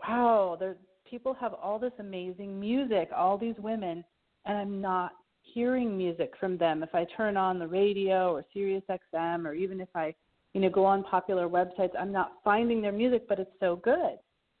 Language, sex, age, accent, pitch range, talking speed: English, female, 40-59, American, 170-200 Hz, 180 wpm